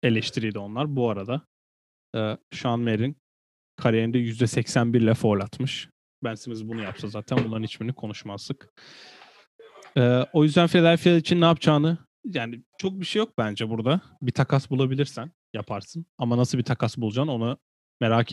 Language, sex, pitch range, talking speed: Turkish, male, 115-140 Hz, 145 wpm